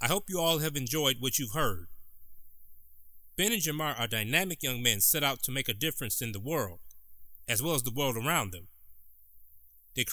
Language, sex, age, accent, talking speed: English, male, 30-49, American, 195 wpm